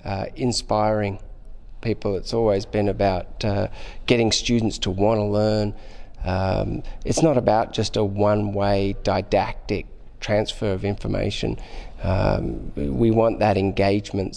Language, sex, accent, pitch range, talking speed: English, male, Australian, 100-115 Hz, 120 wpm